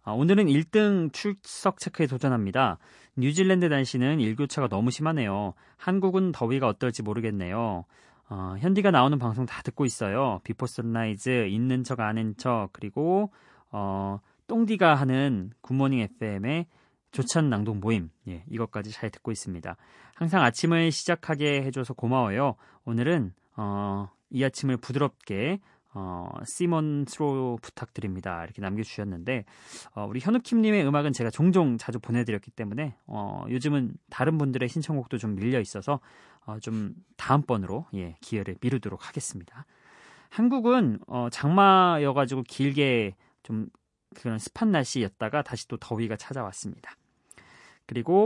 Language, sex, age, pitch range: Korean, male, 30-49, 110-150 Hz